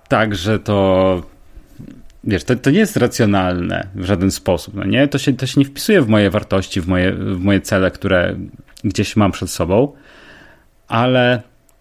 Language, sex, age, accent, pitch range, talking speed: Polish, male, 30-49, native, 100-135 Hz, 145 wpm